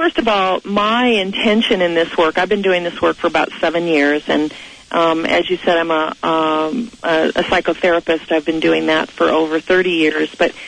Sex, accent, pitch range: female, American, 160-190 Hz